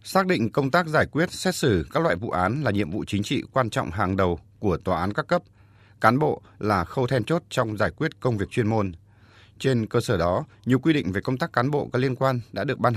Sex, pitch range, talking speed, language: male, 100-130 Hz, 265 wpm, Vietnamese